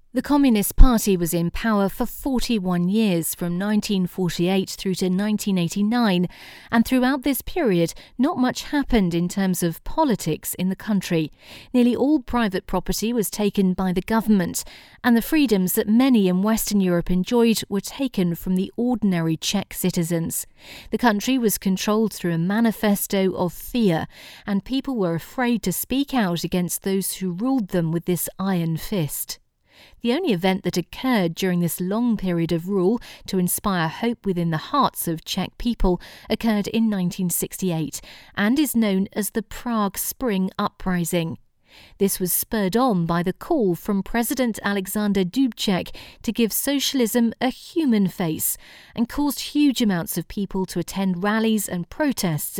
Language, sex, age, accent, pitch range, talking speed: Croatian, female, 40-59, British, 180-230 Hz, 155 wpm